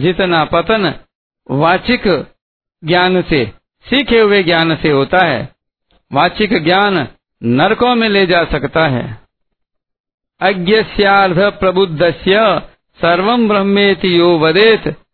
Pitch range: 165-205 Hz